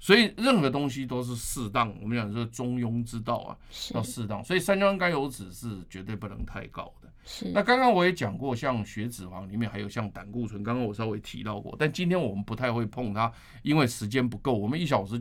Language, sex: Chinese, male